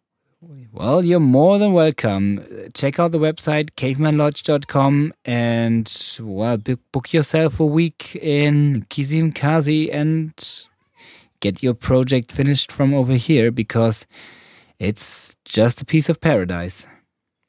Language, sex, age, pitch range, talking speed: English, male, 20-39, 105-135 Hz, 110 wpm